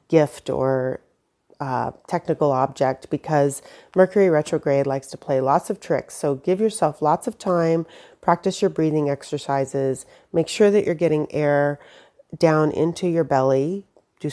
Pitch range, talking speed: 135-165 Hz, 145 wpm